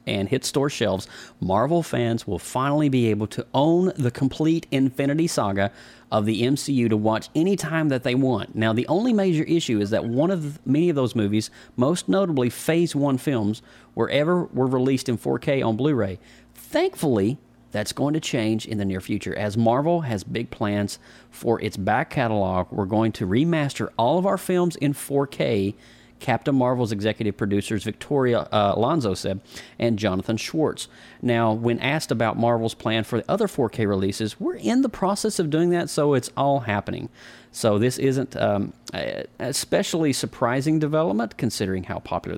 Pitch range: 105-145 Hz